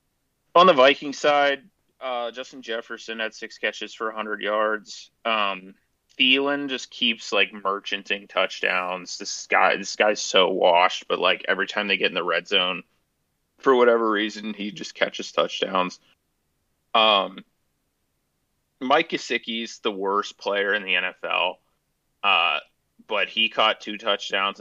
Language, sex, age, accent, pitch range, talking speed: English, male, 30-49, American, 95-115 Hz, 140 wpm